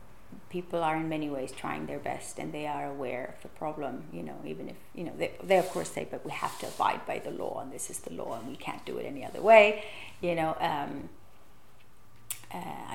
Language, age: French, 30-49